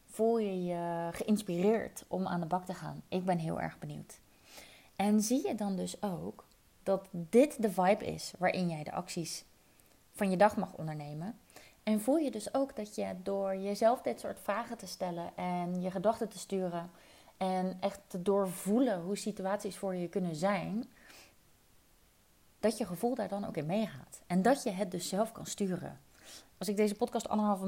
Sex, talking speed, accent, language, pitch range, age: female, 185 wpm, Dutch, Dutch, 180-215 Hz, 30-49